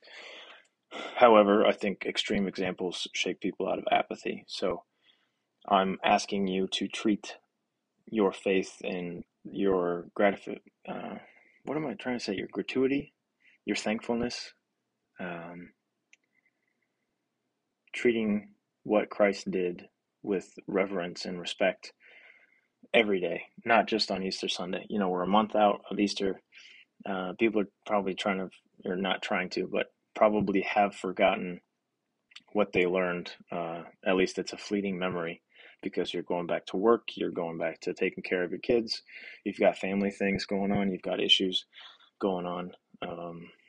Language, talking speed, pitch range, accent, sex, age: English, 145 wpm, 90-105 Hz, American, male, 20-39